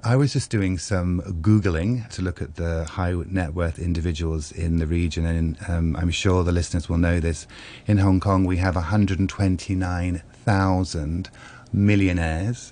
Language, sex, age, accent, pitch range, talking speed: English, male, 30-49, British, 85-110 Hz, 155 wpm